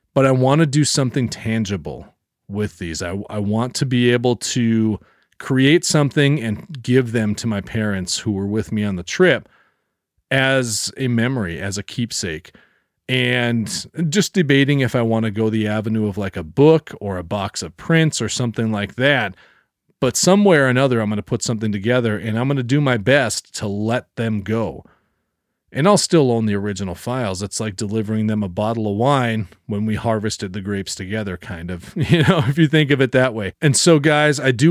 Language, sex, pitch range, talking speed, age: English, male, 110-140 Hz, 205 wpm, 40-59